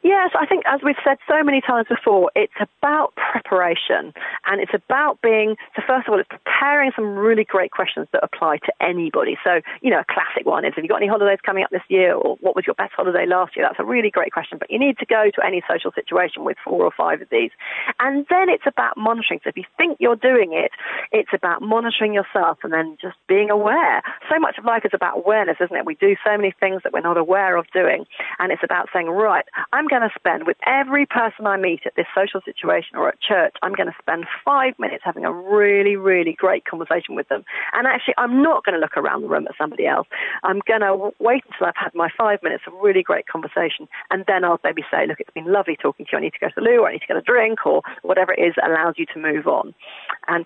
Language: English